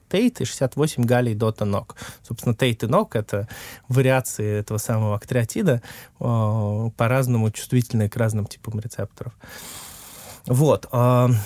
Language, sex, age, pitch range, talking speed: Russian, male, 20-39, 110-130 Hz, 115 wpm